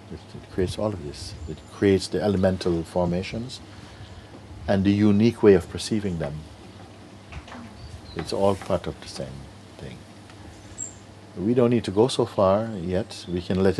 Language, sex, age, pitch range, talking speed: English, male, 60-79, 85-105 Hz, 150 wpm